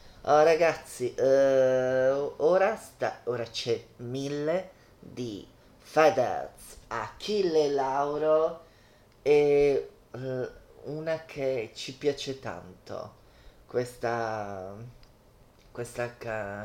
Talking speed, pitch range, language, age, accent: 75 wpm, 120-150 Hz, Italian, 30-49, native